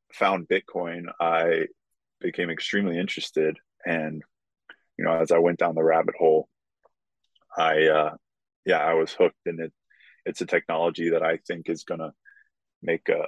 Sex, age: male, 20-39